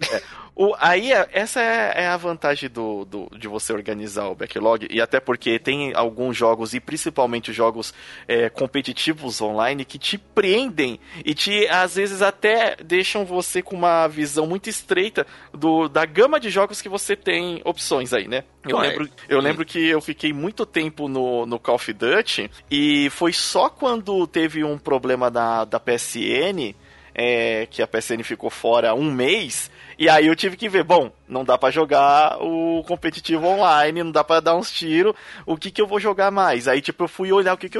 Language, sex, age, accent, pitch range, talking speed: Portuguese, male, 20-39, Brazilian, 125-180 Hz, 190 wpm